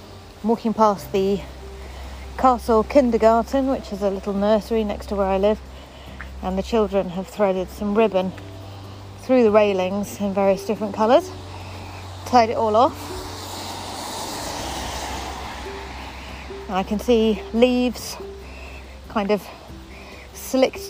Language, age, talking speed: English, 30-49, 115 wpm